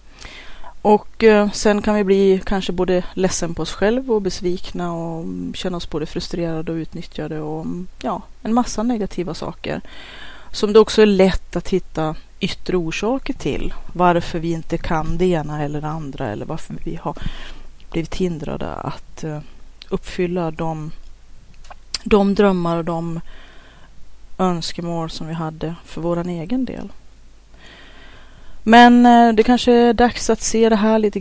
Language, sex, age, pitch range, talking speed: Swedish, female, 30-49, 165-210 Hz, 140 wpm